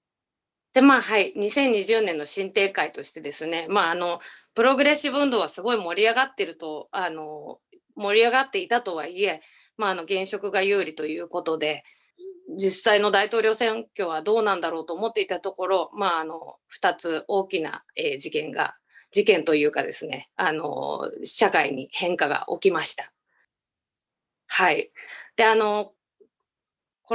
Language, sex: Japanese, female